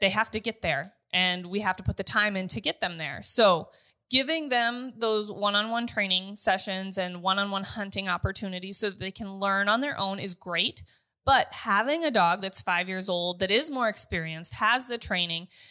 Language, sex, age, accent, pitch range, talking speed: English, female, 20-39, American, 185-225 Hz, 205 wpm